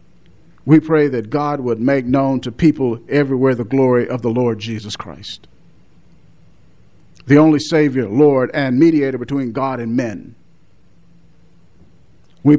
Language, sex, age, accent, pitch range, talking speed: English, male, 50-69, American, 125-165 Hz, 135 wpm